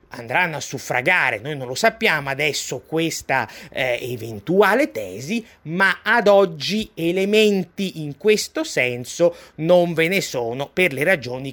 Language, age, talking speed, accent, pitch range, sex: Italian, 30-49, 135 wpm, native, 145-195 Hz, male